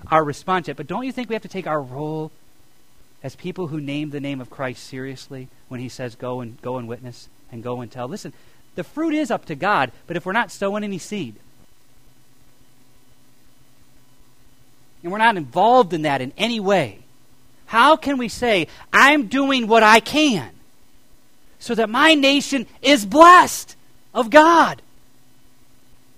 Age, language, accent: 40-59, English, American